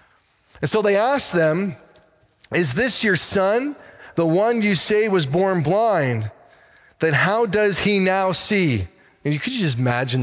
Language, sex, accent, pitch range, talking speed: English, male, American, 125-190 Hz, 160 wpm